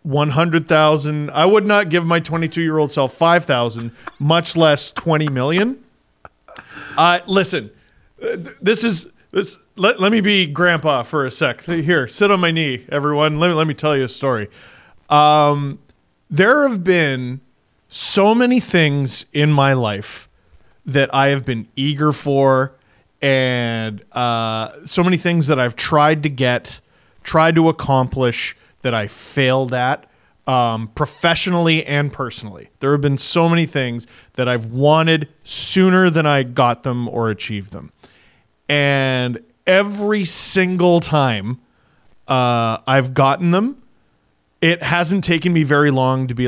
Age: 40-59